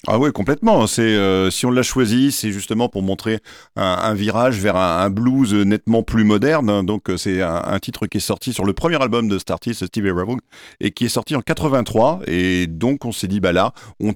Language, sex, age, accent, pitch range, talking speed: French, male, 50-69, French, 95-115 Hz, 230 wpm